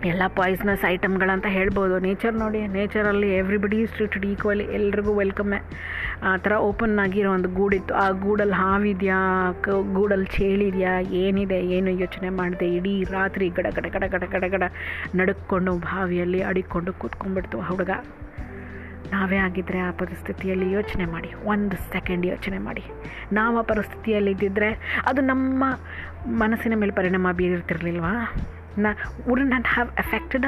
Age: 30-49